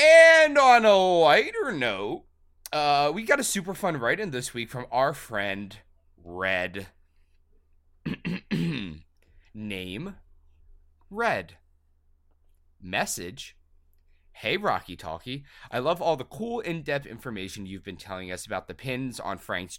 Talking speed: 120 wpm